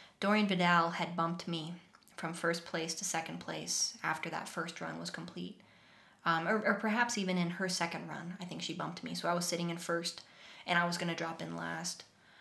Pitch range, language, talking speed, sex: 155-175 Hz, English, 215 wpm, female